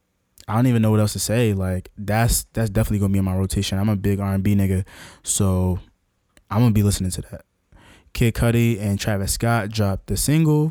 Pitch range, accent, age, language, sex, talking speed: 95-110 Hz, American, 20-39, English, male, 205 wpm